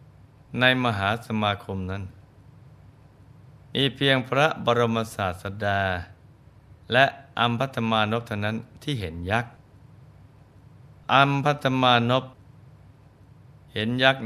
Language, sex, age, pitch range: Thai, male, 20-39, 105-130 Hz